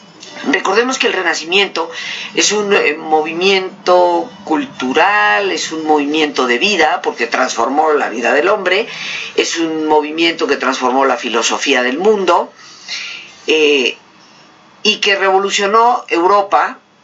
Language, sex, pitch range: Spanish, female, 150-220 Hz